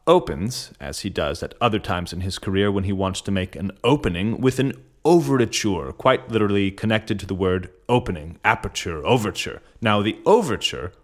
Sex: male